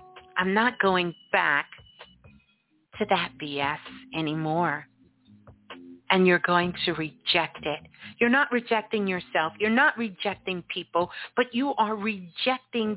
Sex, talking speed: female, 120 wpm